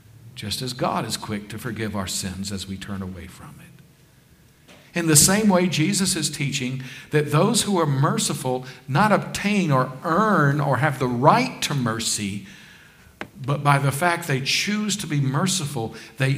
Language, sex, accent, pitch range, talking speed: English, male, American, 120-170 Hz, 170 wpm